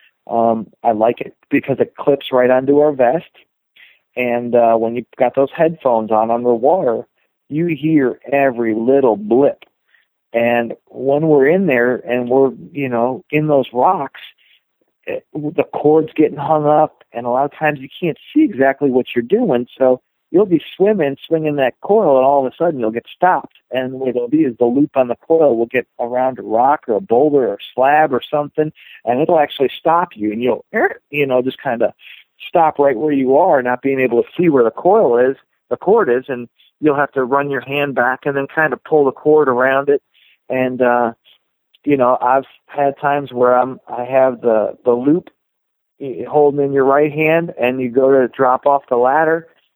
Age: 50-69